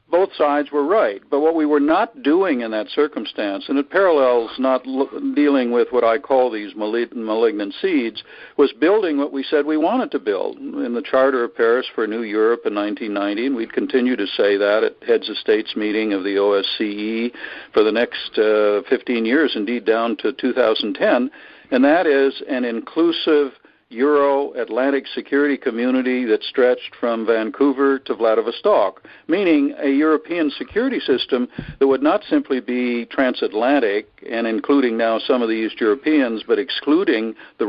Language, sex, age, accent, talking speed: English, male, 60-79, American, 165 wpm